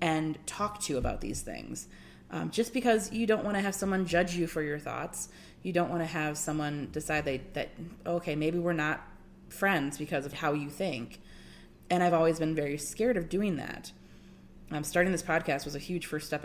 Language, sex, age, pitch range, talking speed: English, female, 30-49, 145-180 Hz, 205 wpm